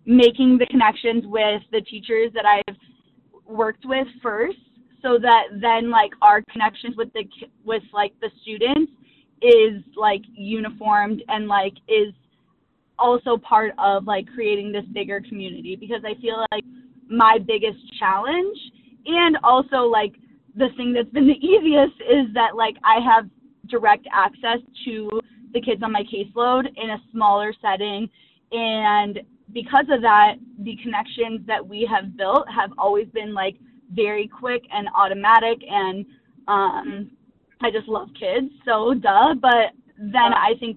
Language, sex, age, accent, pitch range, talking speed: English, female, 20-39, American, 210-250 Hz, 150 wpm